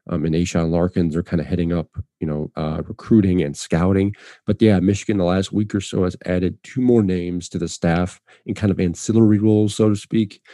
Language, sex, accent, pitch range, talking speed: English, male, American, 90-105 Hz, 220 wpm